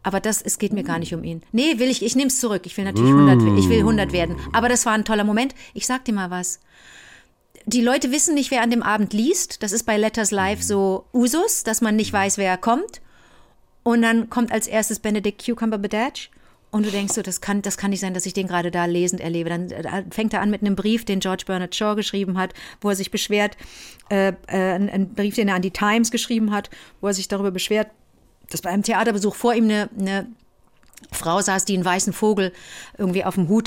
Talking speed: 235 wpm